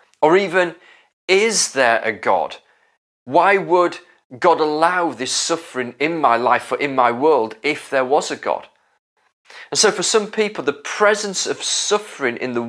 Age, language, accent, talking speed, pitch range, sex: 30-49, English, British, 165 wpm, 135-180 Hz, male